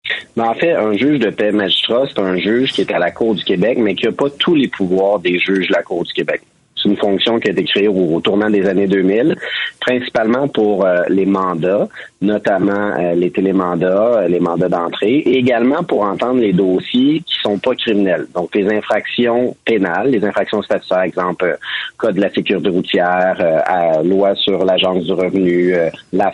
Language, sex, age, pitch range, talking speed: French, male, 30-49, 90-105 Hz, 185 wpm